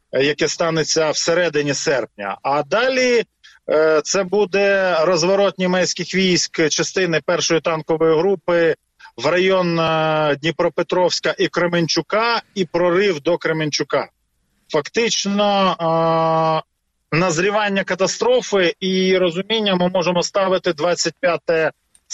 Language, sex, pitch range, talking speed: Ukrainian, male, 160-195 Hz, 95 wpm